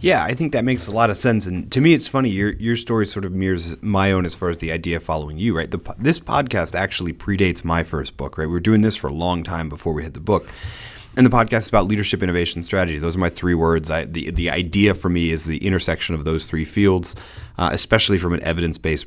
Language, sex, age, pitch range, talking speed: English, male, 30-49, 85-110 Hz, 265 wpm